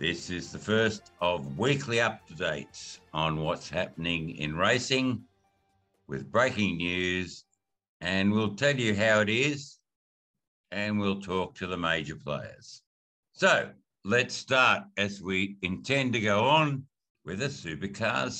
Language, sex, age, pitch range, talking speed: English, male, 60-79, 85-105 Hz, 135 wpm